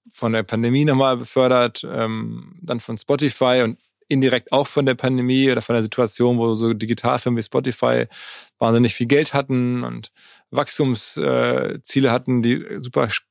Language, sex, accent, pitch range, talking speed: German, male, German, 115-135 Hz, 155 wpm